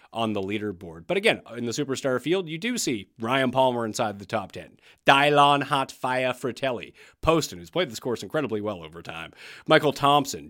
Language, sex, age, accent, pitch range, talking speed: English, male, 30-49, American, 110-155 Hz, 185 wpm